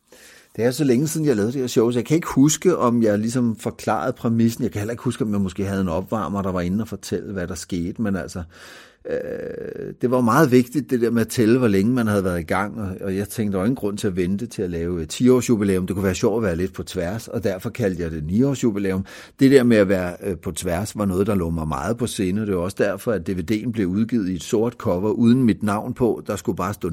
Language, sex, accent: Danish, male, native